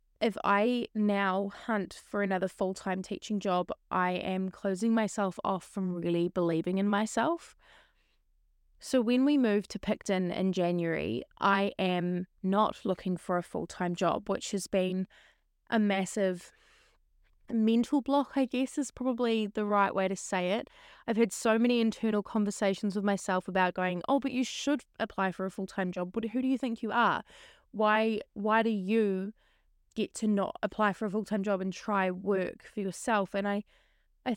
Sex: female